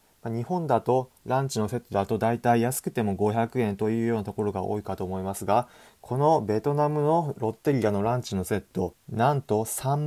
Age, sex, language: 20-39, male, Japanese